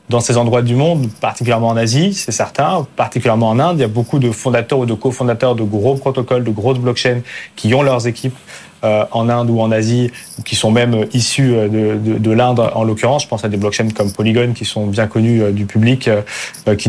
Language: French